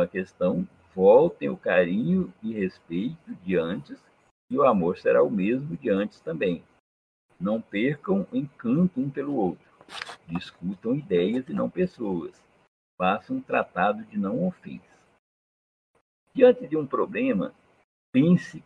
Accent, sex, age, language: Brazilian, male, 60-79, Portuguese